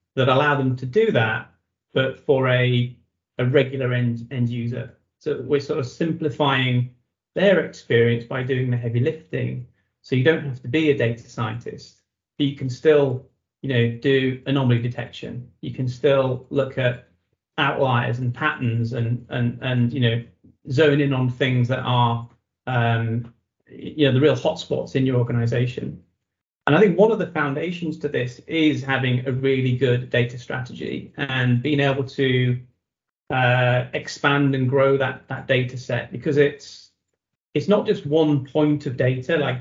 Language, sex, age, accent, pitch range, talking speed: English, male, 30-49, British, 125-145 Hz, 165 wpm